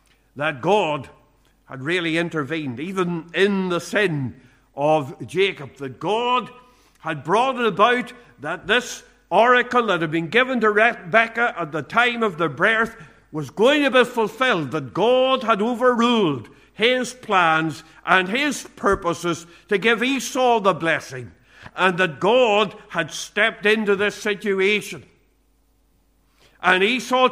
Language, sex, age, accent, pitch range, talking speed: English, male, 50-69, Irish, 165-225 Hz, 135 wpm